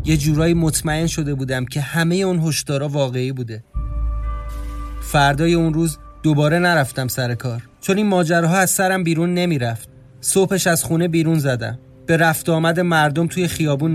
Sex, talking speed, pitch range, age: male, 155 wpm, 130-165 Hz, 30-49